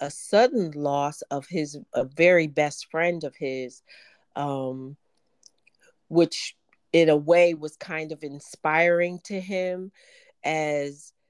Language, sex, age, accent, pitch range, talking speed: English, female, 40-59, American, 135-170 Hz, 115 wpm